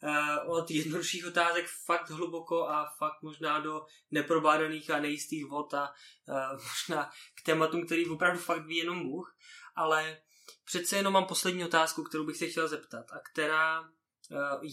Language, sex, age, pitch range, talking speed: Czech, male, 20-39, 145-170 Hz, 160 wpm